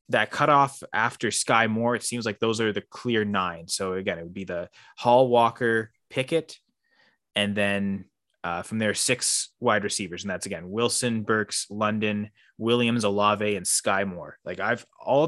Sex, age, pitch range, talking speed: male, 20-39, 105-120 Hz, 175 wpm